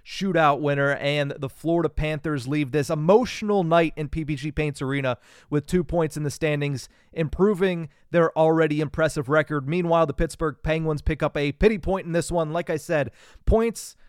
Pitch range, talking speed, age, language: 145-170 Hz, 175 wpm, 30-49, English